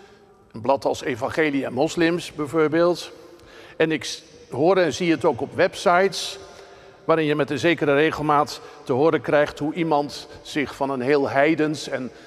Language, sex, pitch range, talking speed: Dutch, male, 145-185 Hz, 160 wpm